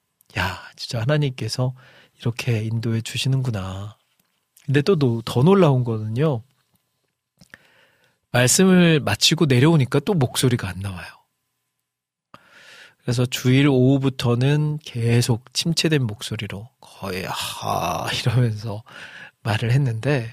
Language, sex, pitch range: Korean, male, 110-135 Hz